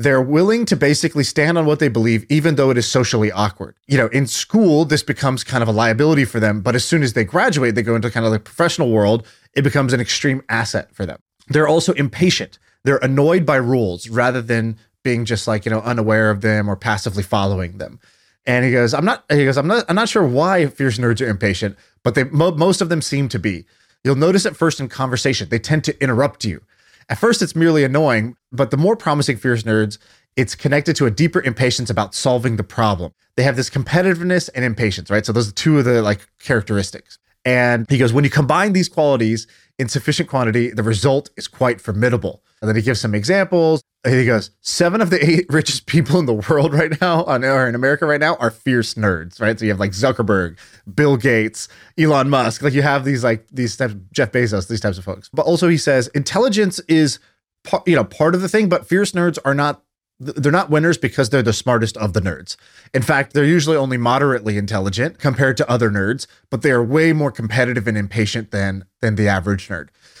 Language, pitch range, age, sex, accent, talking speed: English, 110-150 Hz, 30-49, male, American, 225 wpm